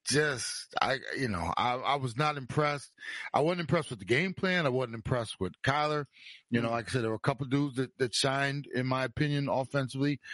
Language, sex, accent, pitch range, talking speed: English, male, American, 115-145 Hz, 225 wpm